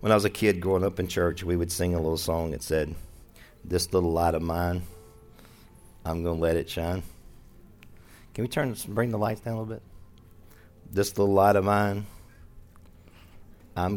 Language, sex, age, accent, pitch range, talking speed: English, male, 50-69, American, 85-110 Hz, 190 wpm